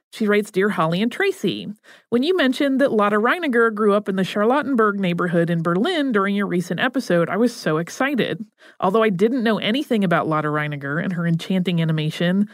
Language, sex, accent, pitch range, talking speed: English, female, American, 180-235 Hz, 190 wpm